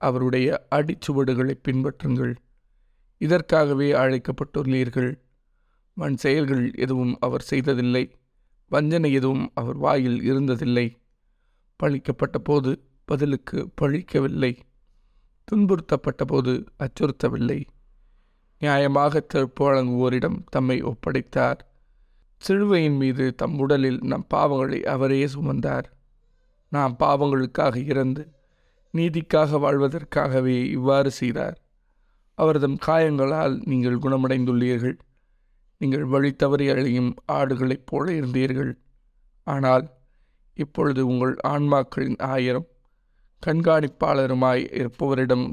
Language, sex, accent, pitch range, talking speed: Tamil, male, native, 125-145 Hz, 75 wpm